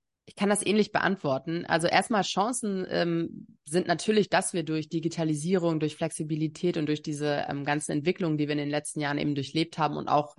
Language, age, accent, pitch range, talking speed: German, 30-49, German, 155-190 Hz, 195 wpm